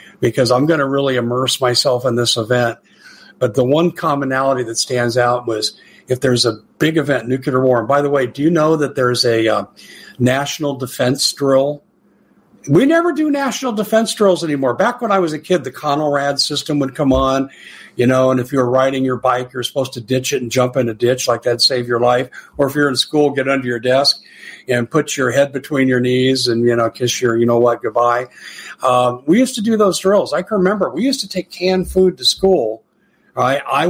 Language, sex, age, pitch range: English, male, 50-69, 120-150 Hz